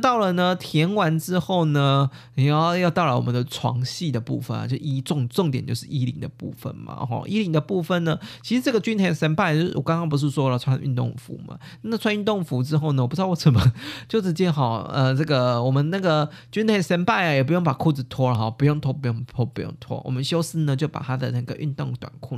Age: 20-39